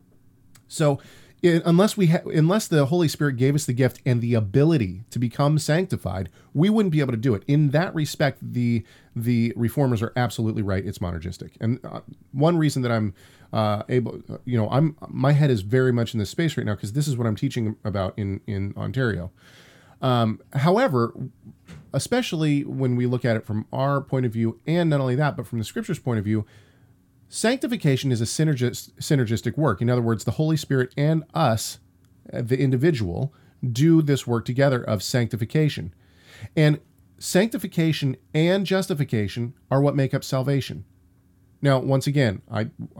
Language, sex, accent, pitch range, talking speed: English, male, American, 115-145 Hz, 175 wpm